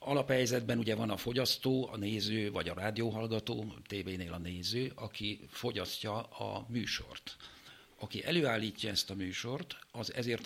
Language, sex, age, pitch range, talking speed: Hungarian, male, 50-69, 100-125 Hz, 140 wpm